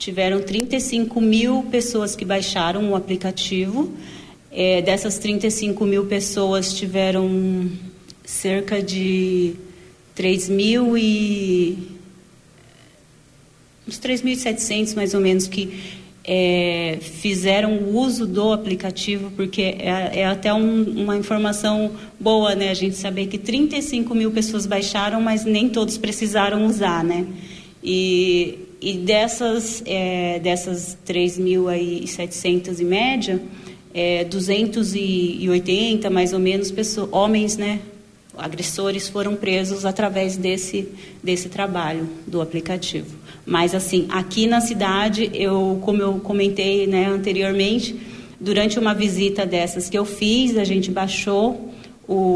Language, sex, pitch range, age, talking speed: Portuguese, female, 185-215 Hz, 40-59, 115 wpm